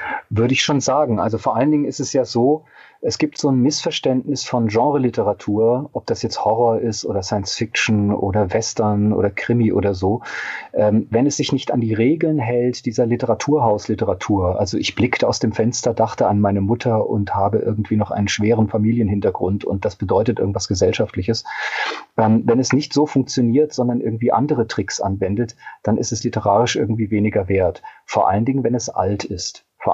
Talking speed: 180 wpm